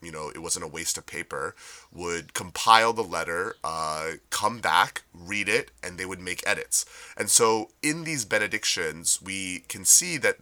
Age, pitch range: 30-49, 85-115 Hz